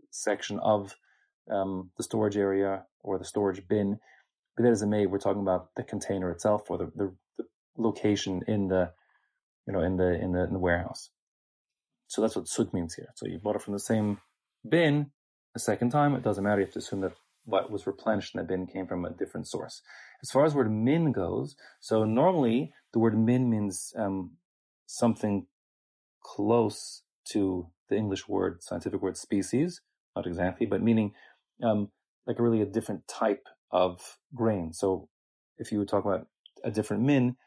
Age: 30-49